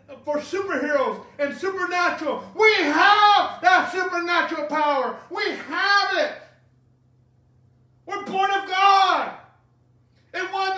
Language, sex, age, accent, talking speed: English, male, 50-69, American, 100 wpm